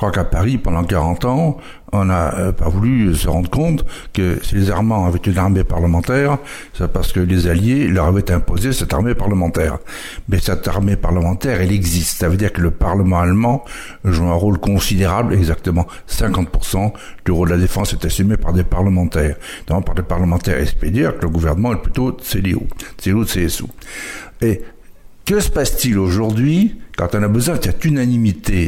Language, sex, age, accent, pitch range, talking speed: French, male, 60-79, French, 85-110 Hz, 185 wpm